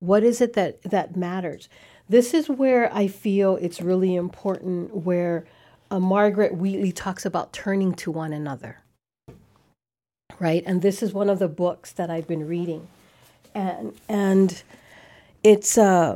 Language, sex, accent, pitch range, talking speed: English, female, American, 180-215 Hz, 145 wpm